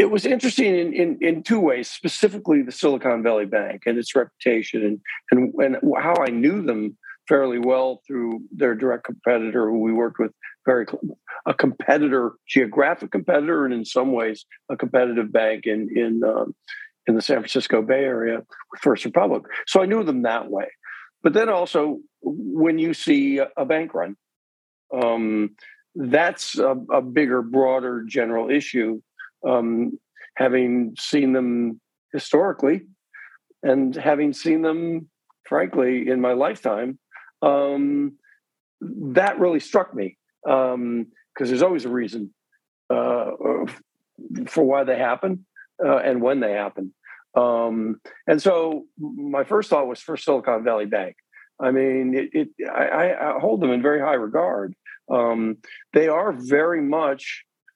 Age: 50-69